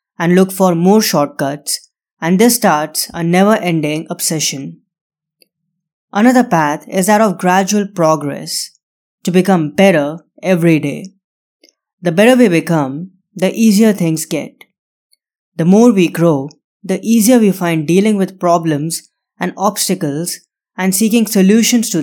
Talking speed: 130 wpm